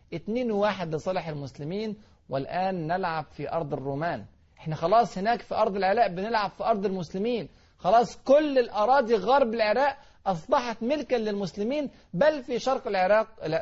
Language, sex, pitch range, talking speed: Arabic, male, 150-215 Hz, 135 wpm